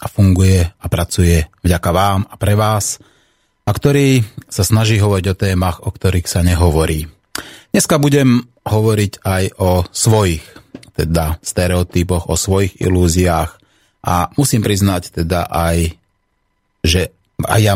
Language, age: Slovak, 30-49